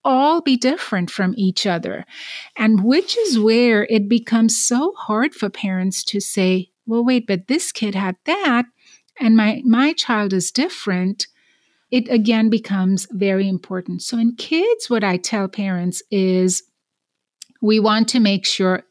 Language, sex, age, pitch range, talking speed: English, female, 30-49, 195-245 Hz, 155 wpm